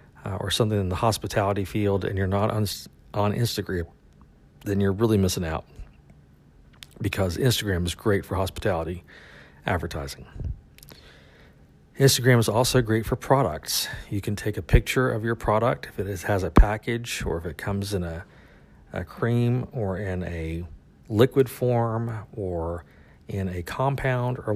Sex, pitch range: male, 90-110 Hz